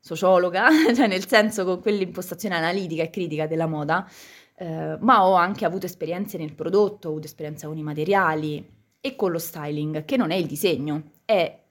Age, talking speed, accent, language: 20-39, 180 wpm, native, Italian